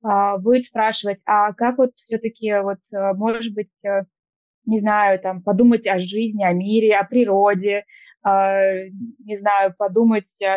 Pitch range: 195-230 Hz